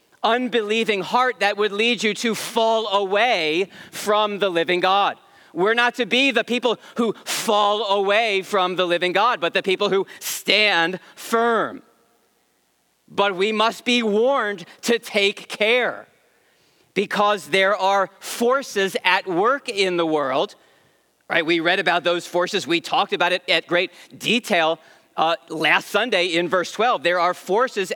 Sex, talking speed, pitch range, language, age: male, 150 wpm, 190-240 Hz, English, 40-59